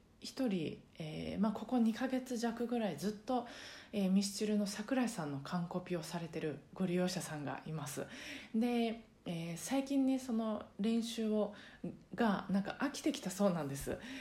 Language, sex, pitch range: Japanese, female, 175-235 Hz